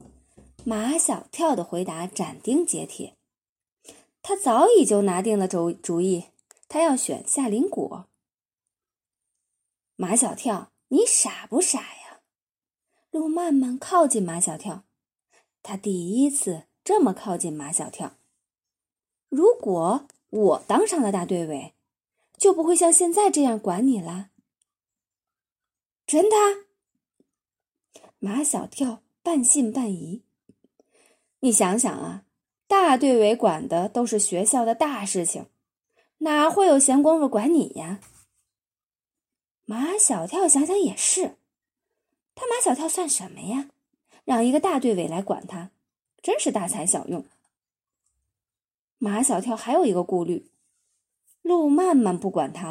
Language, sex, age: Chinese, female, 20-39